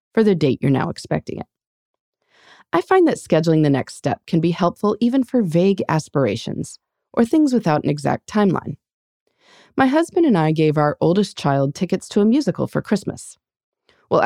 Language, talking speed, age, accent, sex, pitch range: English, 175 wpm, 30-49, American, female, 145-230 Hz